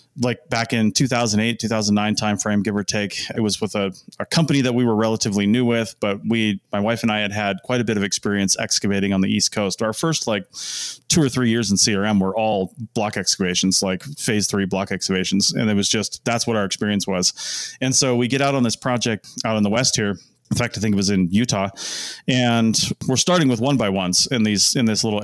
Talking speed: 235 wpm